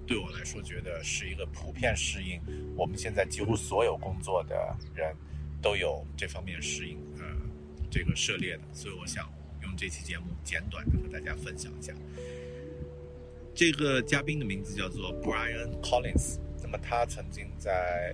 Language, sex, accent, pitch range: Chinese, male, native, 75-105 Hz